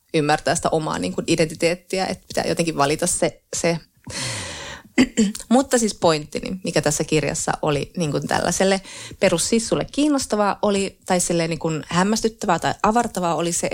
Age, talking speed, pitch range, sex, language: 30-49, 140 wpm, 150-195 Hz, female, Finnish